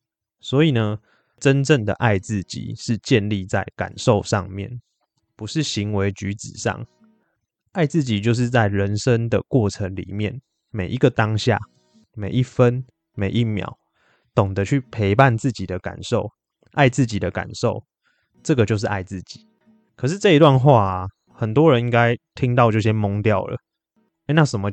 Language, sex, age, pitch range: Chinese, male, 20-39, 100-130 Hz